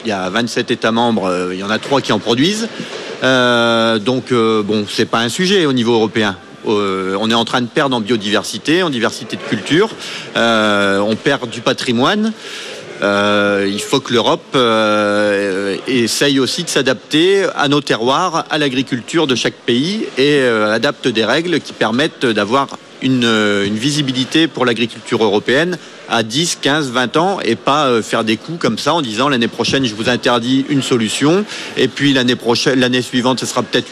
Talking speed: 185 wpm